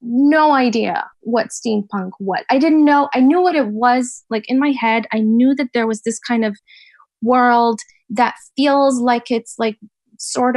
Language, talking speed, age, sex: English, 180 wpm, 10-29, female